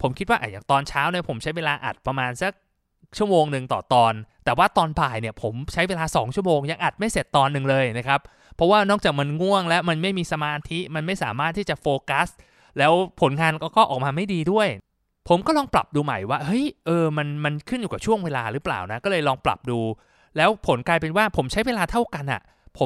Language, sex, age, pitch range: Thai, male, 20-39, 135-185 Hz